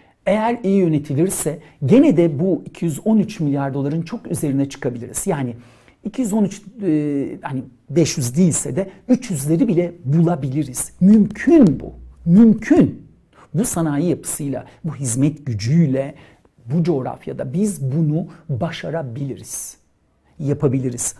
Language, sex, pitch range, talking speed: Turkish, male, 130-190 Hz, 105 wpm